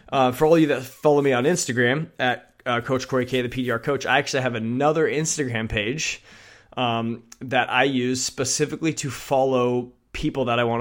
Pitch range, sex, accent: 115-140 Hz, male, American